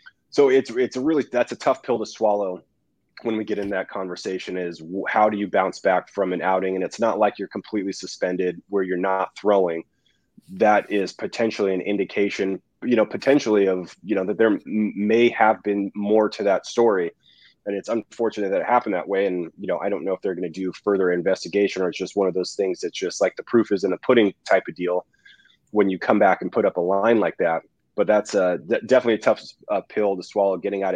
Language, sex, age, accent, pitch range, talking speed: English, male, 20-39, American, 95-105 Hz, 235 wpm